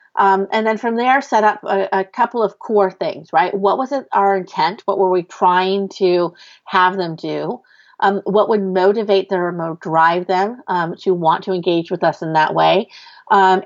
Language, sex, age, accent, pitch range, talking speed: English, female, 40-59, American, 170-200 Hz, 200 wpm